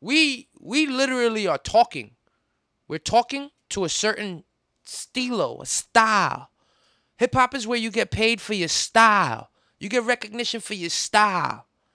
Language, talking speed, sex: English, 145 wpm, male